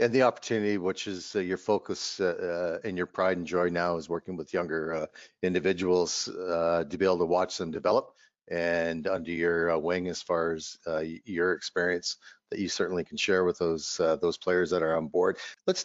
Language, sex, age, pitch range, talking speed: English, male, 50-69, 85-100 Hz, 210 wpm